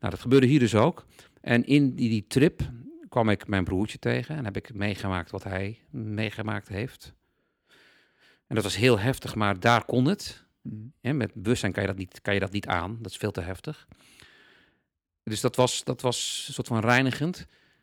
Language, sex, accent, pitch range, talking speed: Dutch, male, Dutch, 100-135 Hz, 185 wpm